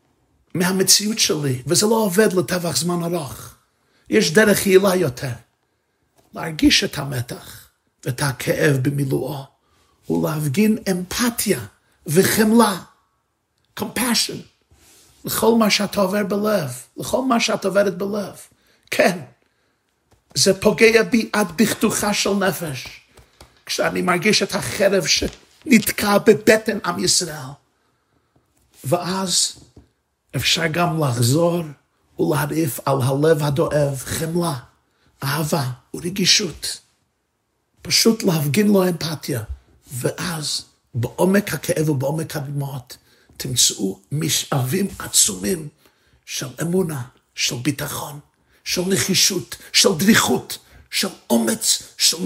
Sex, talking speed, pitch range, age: male, 95 wpm, 140-200 Hz, 50-69